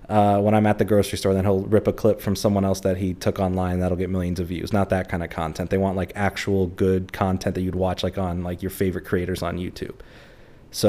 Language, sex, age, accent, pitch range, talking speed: English, male, 20-39, American, 95-105 Hz, 260 wpm